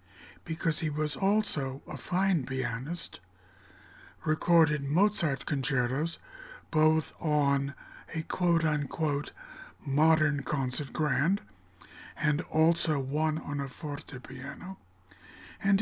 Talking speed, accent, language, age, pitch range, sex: 90 wpm, American, English, 60-79, 125-170 Hz, male